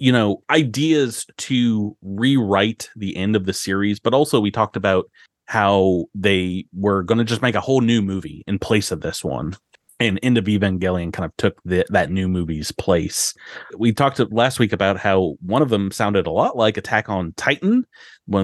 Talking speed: 190 wpm